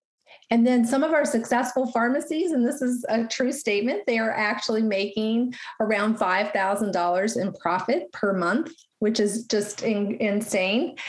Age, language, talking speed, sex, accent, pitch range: 30-49, English, 150 wpm, female, American, 210-260 Hz